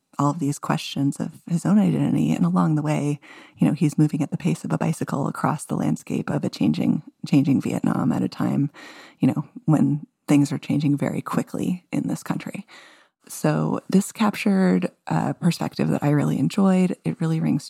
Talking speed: 190 wpm